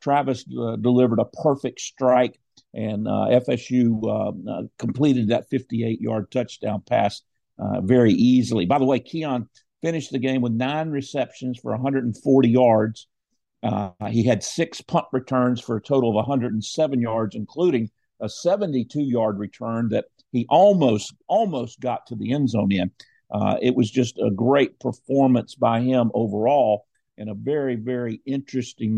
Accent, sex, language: American, male, English